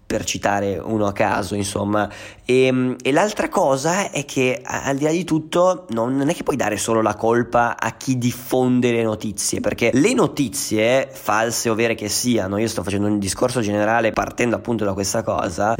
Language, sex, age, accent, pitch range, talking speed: Italian, male, 20-39, native, 110-140 Hz, 190 wpm